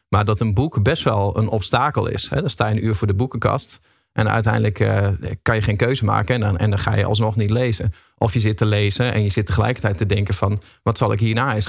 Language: Dutch